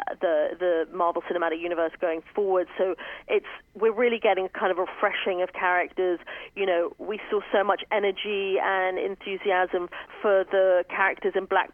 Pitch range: 175-195 Hz